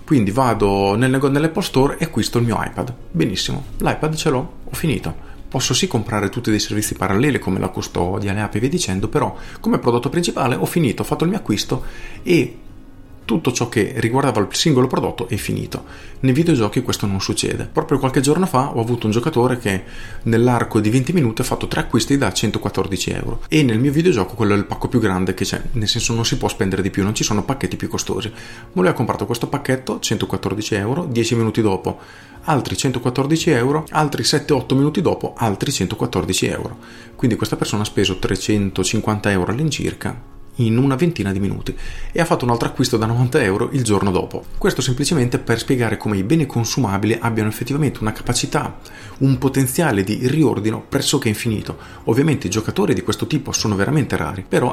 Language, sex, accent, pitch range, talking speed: Italian, male, native, 105-135 Hz, 195 wpm